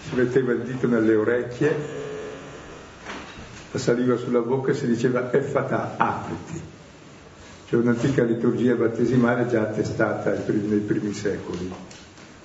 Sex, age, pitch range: male, 50-69, 110-135 Hz